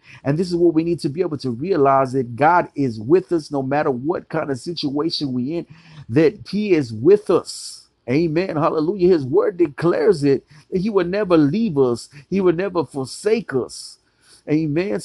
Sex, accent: male, American